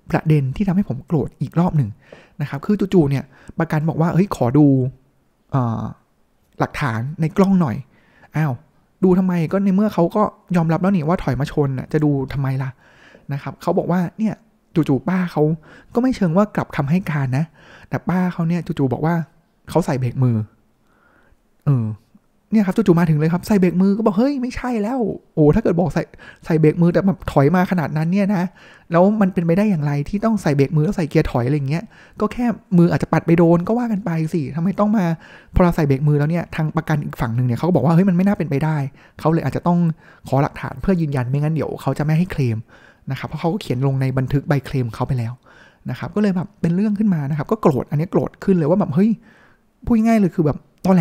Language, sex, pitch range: Thai, male, 145-190 Hz